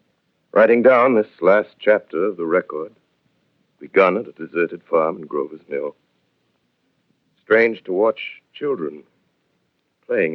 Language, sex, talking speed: English, male, 120 wpm